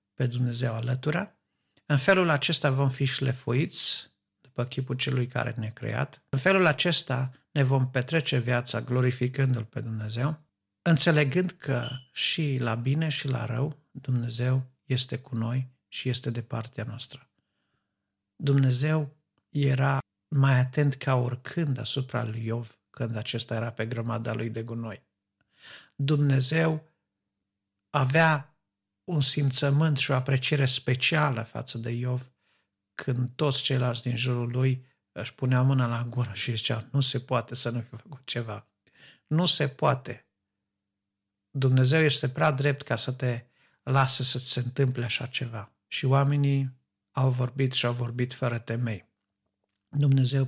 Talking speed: 140 wpm